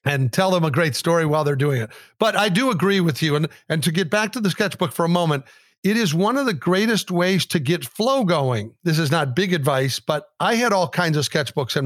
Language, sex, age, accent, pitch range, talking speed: English, male, 50-69, American, 155-205 Hz, 260 wpm